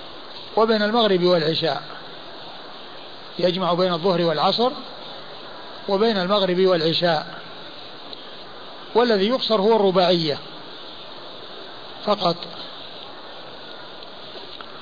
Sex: male